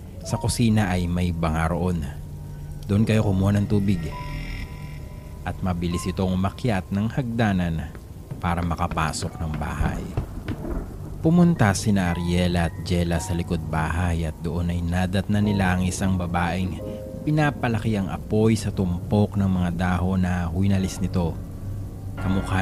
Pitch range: 85-105 Hz